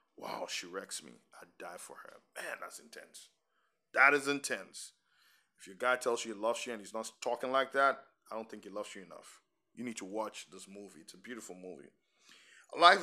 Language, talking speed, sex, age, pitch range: English, 215 wpm, male, 20-39, 110-145 Hz